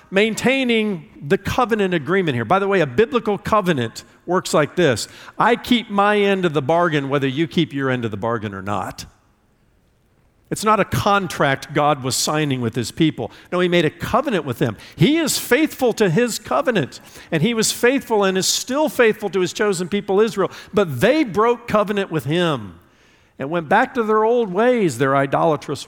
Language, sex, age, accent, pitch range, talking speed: English, male, 50-69, American, 120-190 Hz, 190 wpm